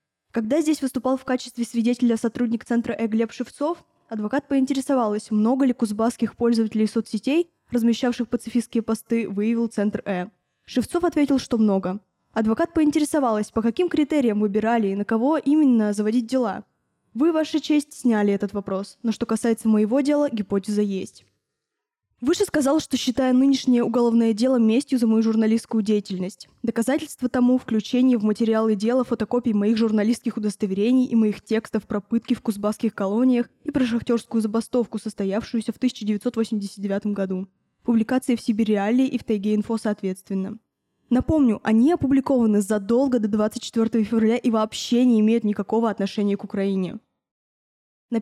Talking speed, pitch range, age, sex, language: 145 wpm, 215-255 Hz, 10-29, female, Russian